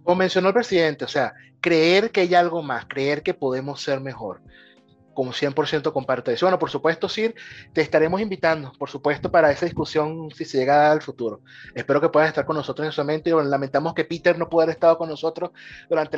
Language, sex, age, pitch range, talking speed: Spanish, male, 30-49, 150-215 Hz, 210 wpm